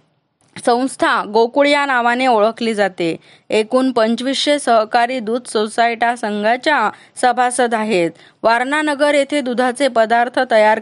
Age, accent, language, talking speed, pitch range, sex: 20-39, native, Marathi, 105 wpm, 225-265 Hz, female